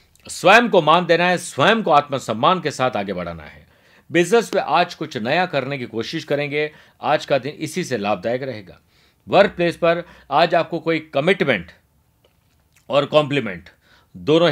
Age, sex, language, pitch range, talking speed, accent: 50-69, male, Hindi, 125-170 Hz, 160 wpm, native